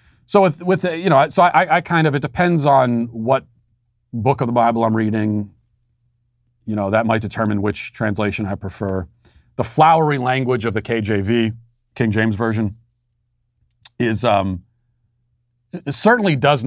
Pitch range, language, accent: 110-135 Hz, English, American